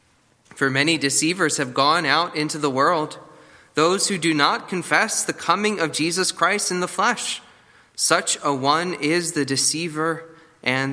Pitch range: 125-165 Hz